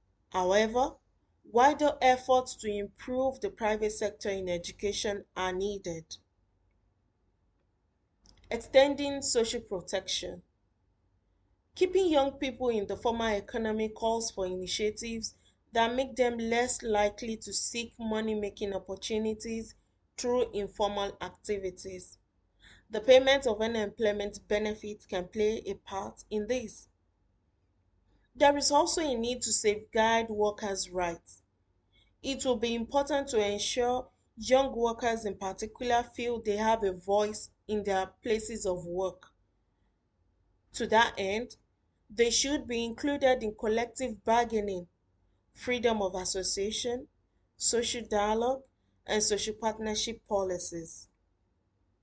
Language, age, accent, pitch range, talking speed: English, 30-49, Nigerian, 180-235 Hz, 110 wpm